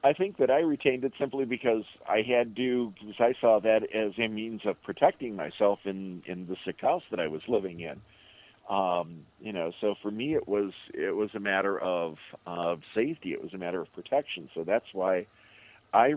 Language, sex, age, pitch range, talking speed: English, male, 50-69, 90-110 Hz, 210 wpm